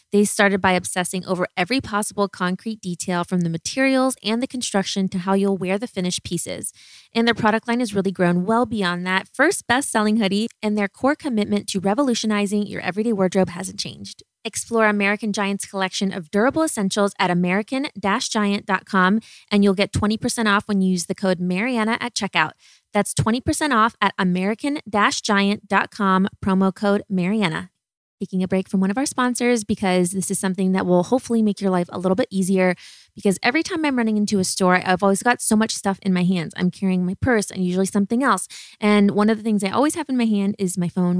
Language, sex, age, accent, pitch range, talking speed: English, female, 20-39, American, 190-225 Hz, 200 wpm